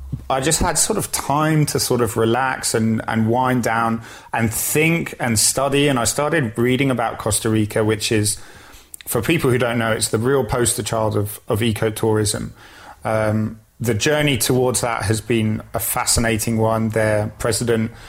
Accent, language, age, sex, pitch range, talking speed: British, English, 30-49, male, 110-125 Hz, 175 wpm